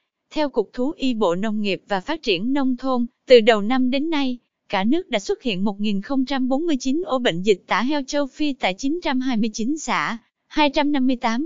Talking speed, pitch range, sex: 180 wpm, 215-285 Hz, female